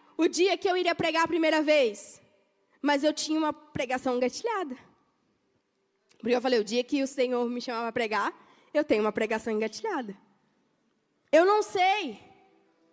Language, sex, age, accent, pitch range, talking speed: Portuguese, female, 10-29, Brazilian, 235-335 Hz, 160 wpm